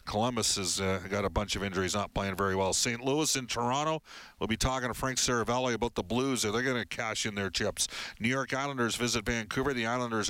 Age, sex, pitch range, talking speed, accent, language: 50-69, male, 105-130 Hz, 235 wpm, American, English